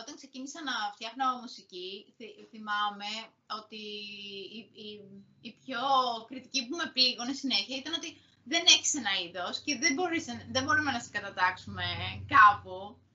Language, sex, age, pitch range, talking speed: Greek, female, 20-39, 210-300 Hz, 140 wpm